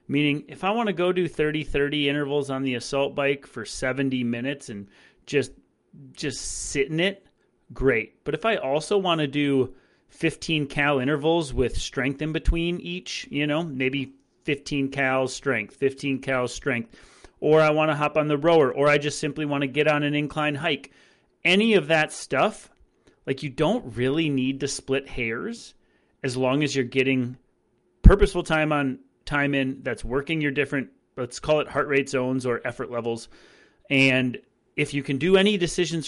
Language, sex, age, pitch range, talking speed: English, male, 30-49, 130-155 Hz, 180 wpm